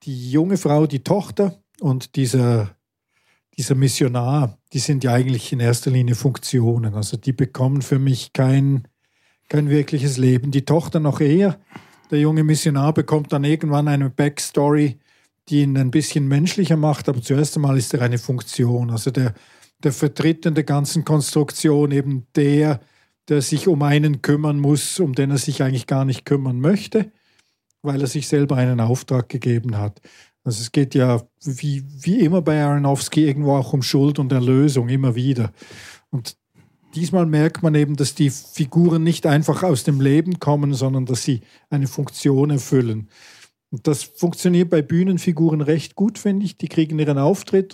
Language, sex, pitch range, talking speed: German, male, 130-155 Hz, 170 wpm